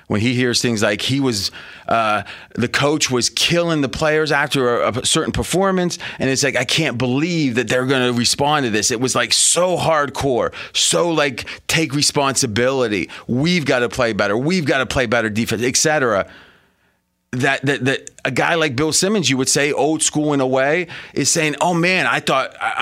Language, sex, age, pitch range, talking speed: English, male, 30-49, 125-155 Hz, 205 wpm